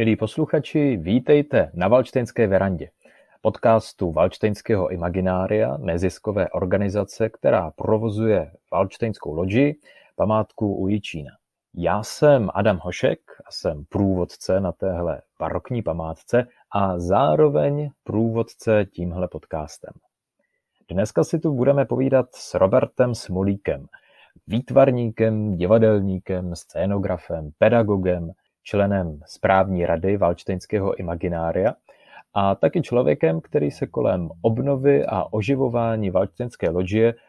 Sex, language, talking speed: male, Czech, 100 wpm